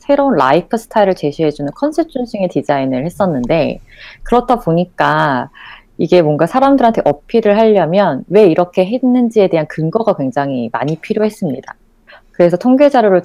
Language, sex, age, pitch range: Korean, female, 30-49, 145-230 Hz